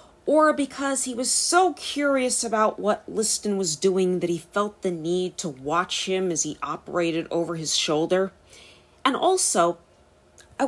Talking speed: 155 wpm